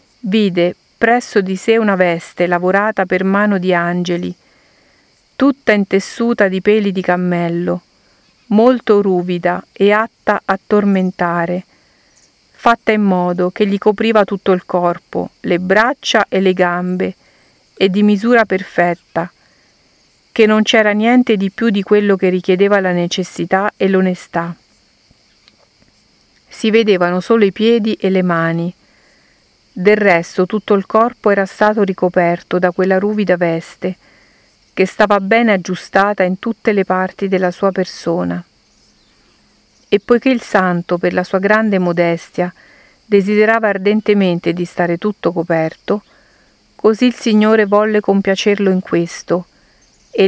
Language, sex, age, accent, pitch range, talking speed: Italian, female, 50-69, native, 180-215 Hz, 130 wpm